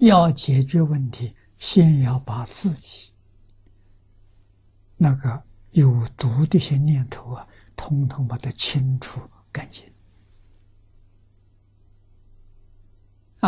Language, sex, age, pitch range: Chinese, male, 60-79, 100-135 Hz